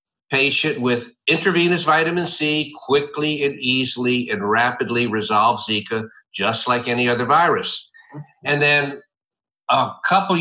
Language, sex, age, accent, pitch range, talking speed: English, male, 50-69, American, 125-175 Hz, 120 wpm